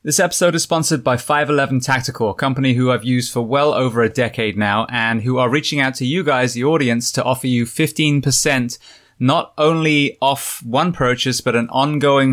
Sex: male